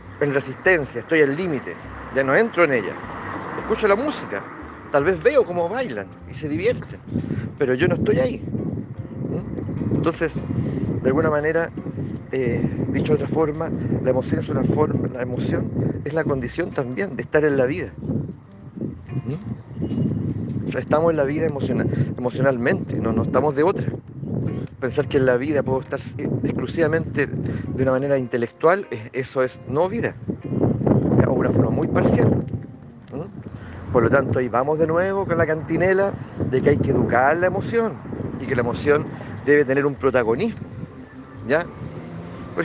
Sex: male